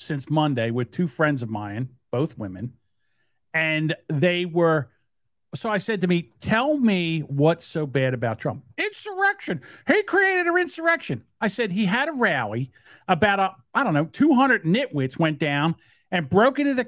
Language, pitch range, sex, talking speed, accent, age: English, 145-220 Hz, male, 170 wpm, American, 50-69